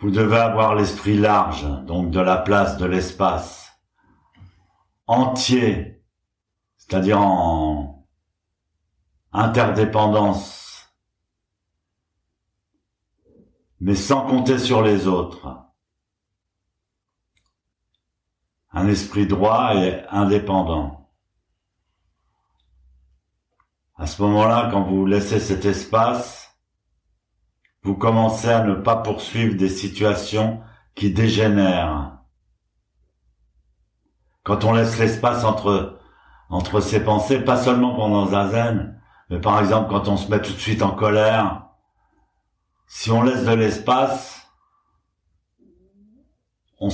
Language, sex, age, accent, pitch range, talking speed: French, male, 60-79, French, 90-110 Hz, 95 wpm